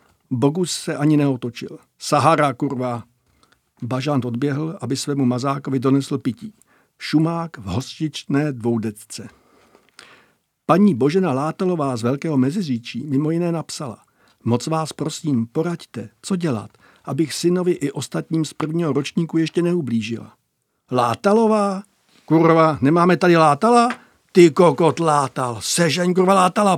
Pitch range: 130-170 Hz